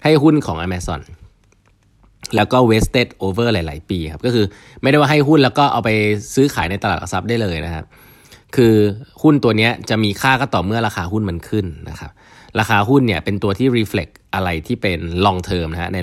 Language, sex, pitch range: Thai, male, 90-115 Hz